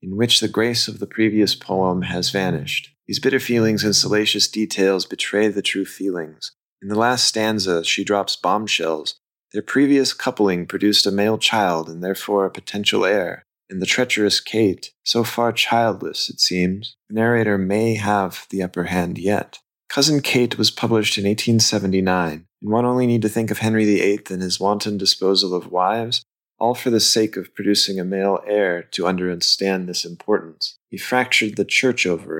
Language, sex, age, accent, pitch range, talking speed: English, male, 30-49, American, 95-115 Hz, 175 wpm